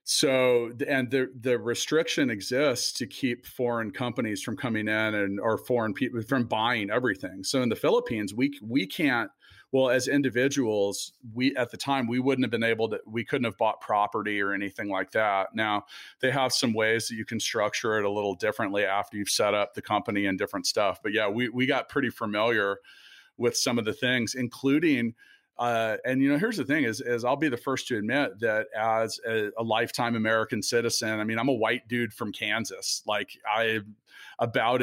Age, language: 40-59, English